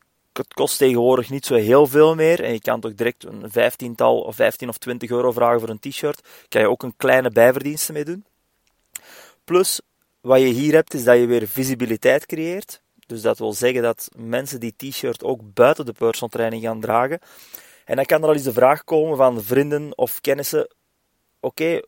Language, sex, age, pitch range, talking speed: English, male, 20-39, 115-145 Hz, 190 wpm